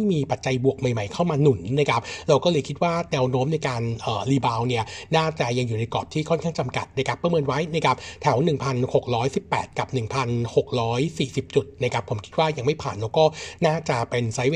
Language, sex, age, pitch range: Thai, male, 60-79, 125-160 Hz